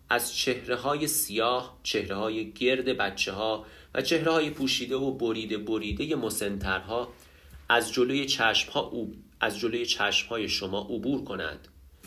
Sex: male